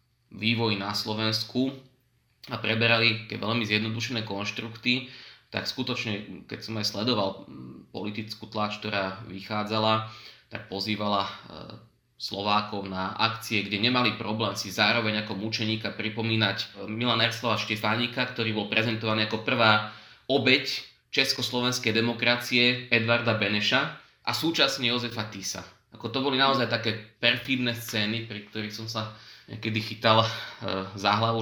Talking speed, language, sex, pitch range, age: 120 wpm, Slovak, male, 105-120 Hz, 20-39